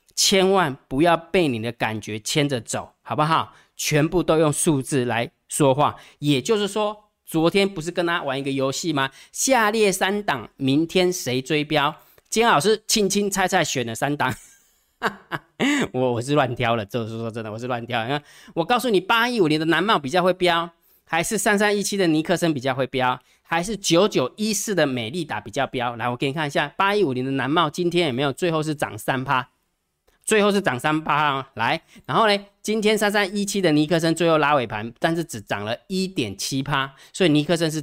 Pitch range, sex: 130-180 Hz, male